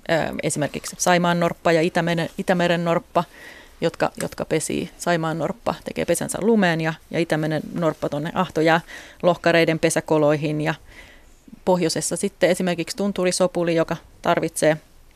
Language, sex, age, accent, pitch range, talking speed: Finnish, female, 30-49, native, 165-195 Hz, 115 wpm